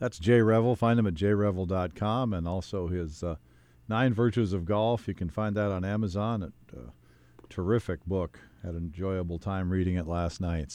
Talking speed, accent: 185 wpm, American